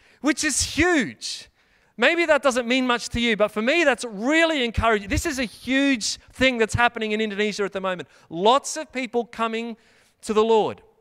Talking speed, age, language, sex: 190 wpm, 40-59, English, male